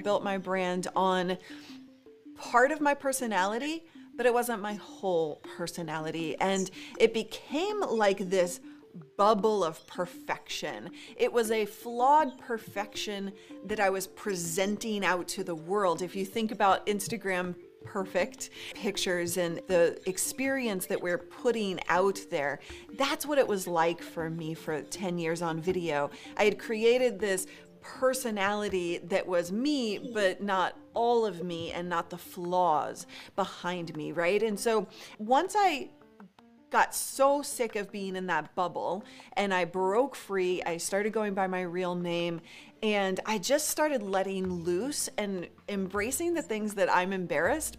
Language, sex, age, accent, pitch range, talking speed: English, female, 30-49, American, 180-240 Hz, 150 wpm